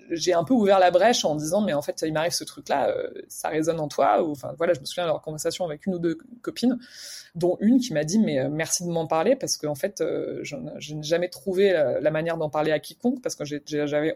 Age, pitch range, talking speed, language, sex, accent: 20-39, 155-190 Hz, 285 wpm, French, female, French